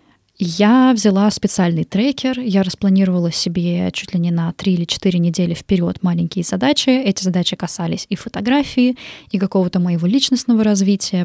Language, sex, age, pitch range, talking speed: Russian, female, 20-39, 185-230 Hz, 150 wpm